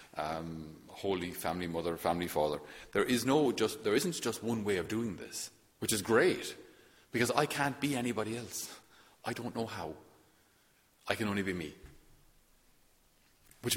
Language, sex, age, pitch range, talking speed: English, male, 30-49, 95-120 Hz, 160 wpm